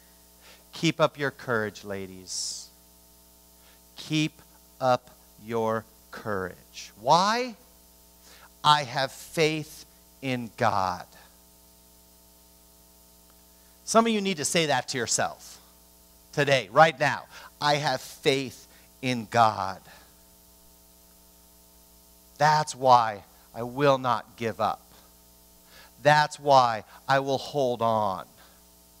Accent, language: American, English